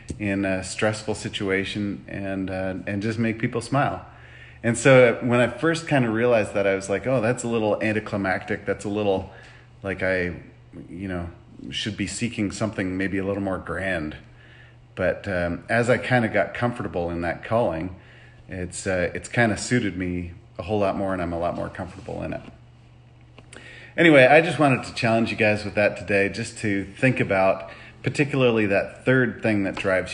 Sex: male